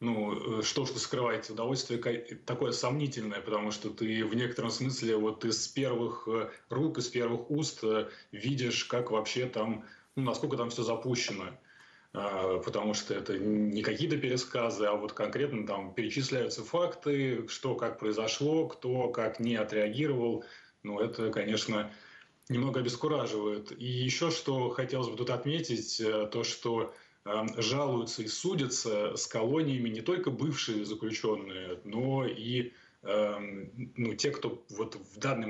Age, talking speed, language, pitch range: 20-39, 135 wpm, Russian, 110-130 Hz